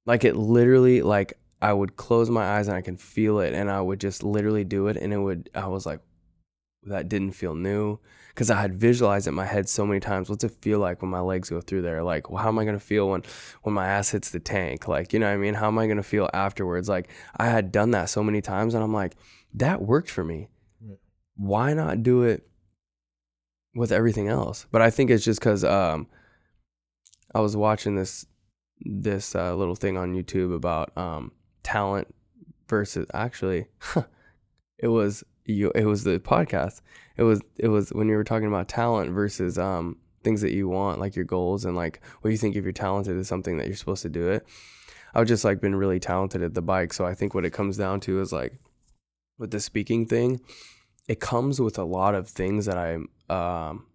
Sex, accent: male, American